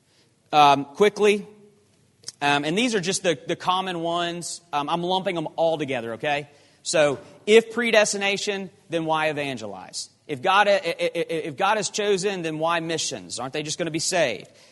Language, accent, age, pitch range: English, American, 30-49, 145-205 Hz